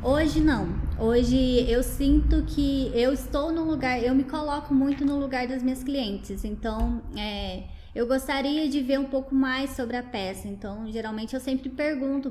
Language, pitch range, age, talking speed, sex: English, 230-280 Hz, 10-29, 175 wpm, female